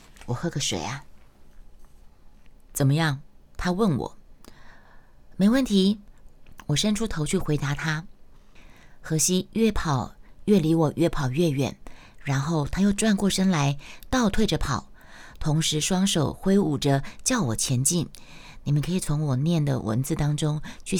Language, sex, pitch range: Chinese, female, 140-190 Hz